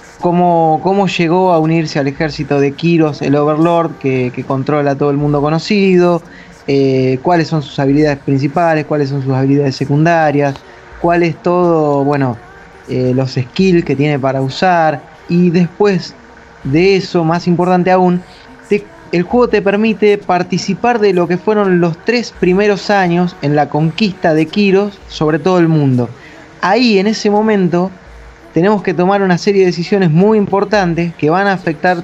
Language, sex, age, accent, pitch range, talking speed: Spanish, male, 20-39, Argentinian, 145-185 Hz, 155 wpm